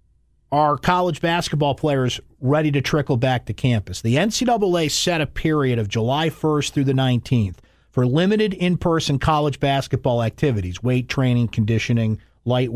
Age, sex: 50-69, male